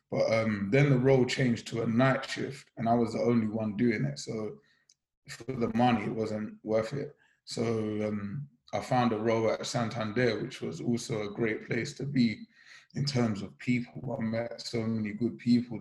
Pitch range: 110-130 Hz